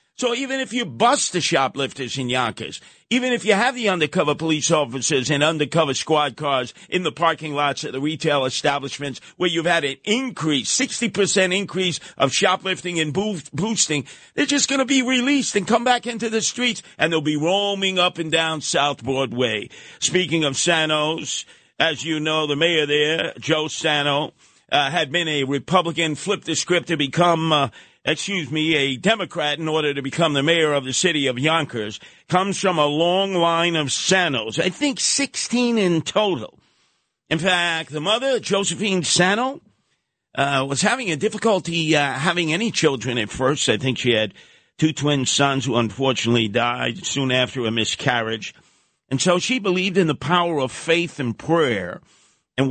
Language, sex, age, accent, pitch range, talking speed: English, male, 50-69, American, 140-185 Hz, 175 wpm